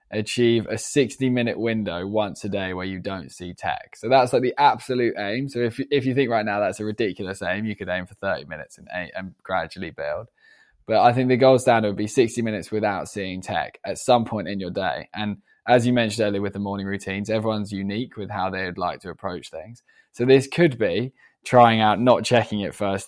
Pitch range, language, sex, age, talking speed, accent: 100-115 Hz, English, male, 20-39, 225 wpm, British